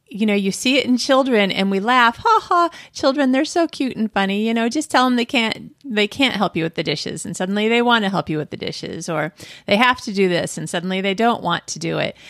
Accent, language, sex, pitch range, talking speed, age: American, English, female, 180-245 Hz, 275 wpm, 30-49